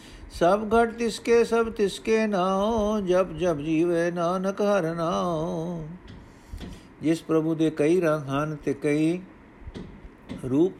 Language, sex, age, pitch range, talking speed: Punjabi, male, 60-79, 135-170 Hz, 115 wpm